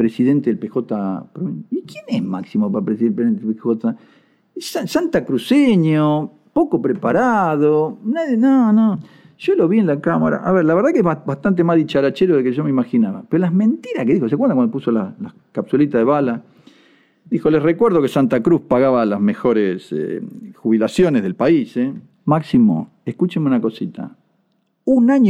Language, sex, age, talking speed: Spanish, male, 50-69, 175 wpm